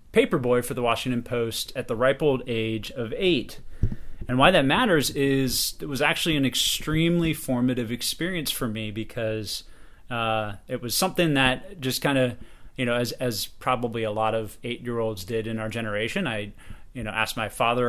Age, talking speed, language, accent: 30-49, 180 wpm, English, American